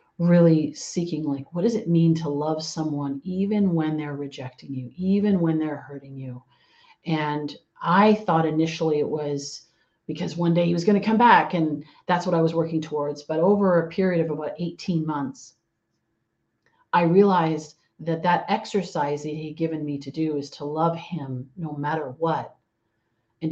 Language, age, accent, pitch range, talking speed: English, 40-59, American, 145-170 Hz, 180 wpm